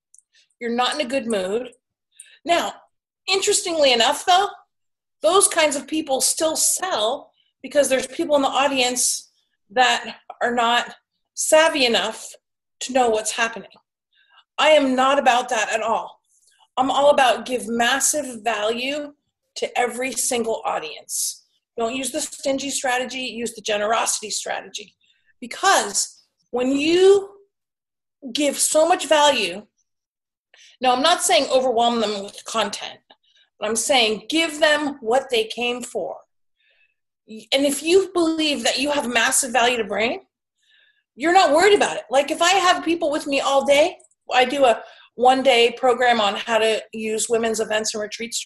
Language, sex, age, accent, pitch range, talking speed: English, female, 40-59, American, 240-335 Hz, 145 wpm